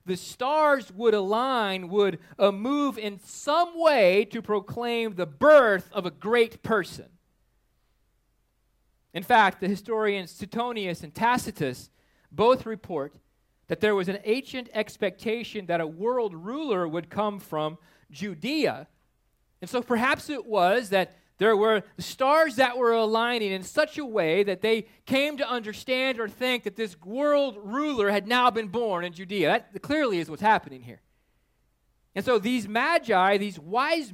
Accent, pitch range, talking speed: American, 185-250 Hz, 150 wpm